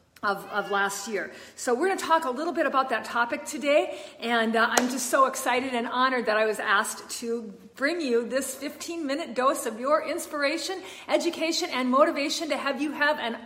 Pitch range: 230-295 Hz